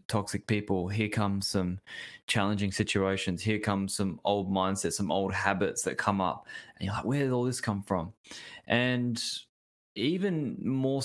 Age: 20-39